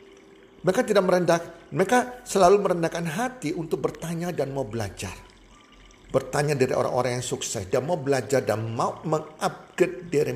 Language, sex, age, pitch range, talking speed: Indonesian, male, 50-69, 115-170 Hz, 140 wpm